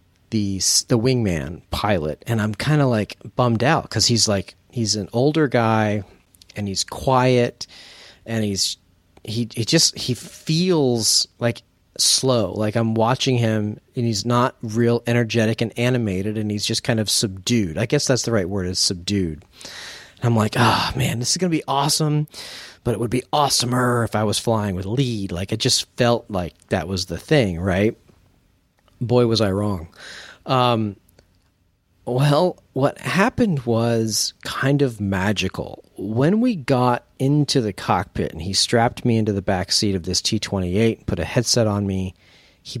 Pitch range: 100-125 Hz